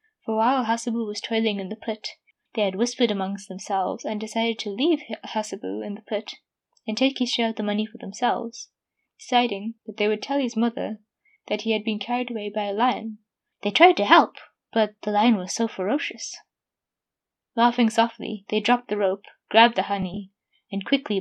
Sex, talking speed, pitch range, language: female, 190 wpm, 205-240 Hz, English